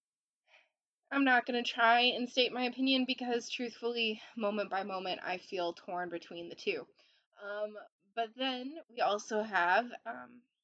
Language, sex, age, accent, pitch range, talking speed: English, female, 20-39, American, 200-255 Hz, 150 wpm